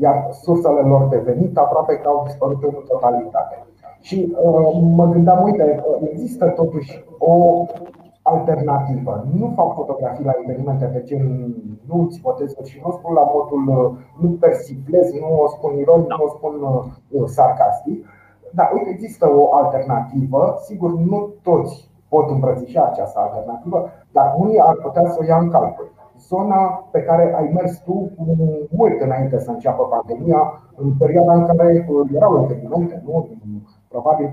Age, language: 30-49, Romanian